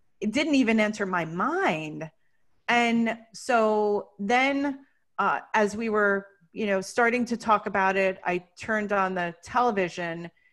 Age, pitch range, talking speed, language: 30-49, 195-235 Hz, 140 wpm, English